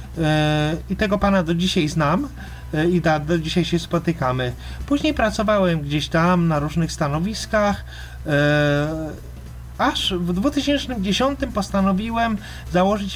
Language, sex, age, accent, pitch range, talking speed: Polish, male, 30-49, native, 150-205 Hz, 110 wpm